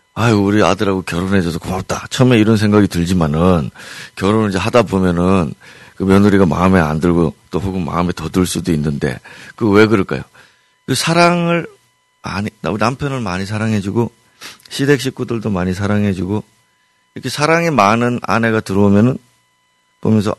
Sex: male